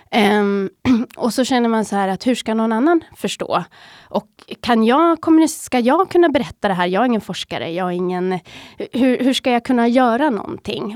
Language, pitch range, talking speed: Swedish, 195-240 Hz, 195 wpm